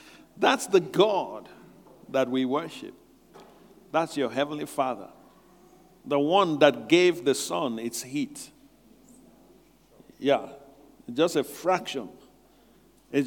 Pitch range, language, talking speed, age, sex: 170-270 Hz, English, 105 wpm, 50-69, male